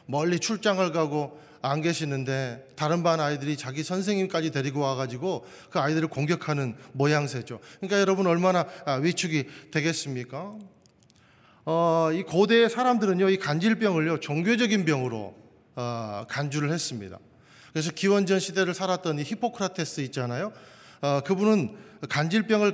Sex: male